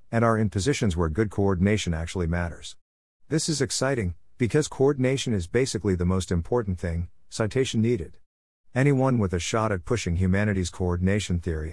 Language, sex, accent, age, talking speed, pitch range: English, male, American, 50-69, 160 wpm, 90-115 Hz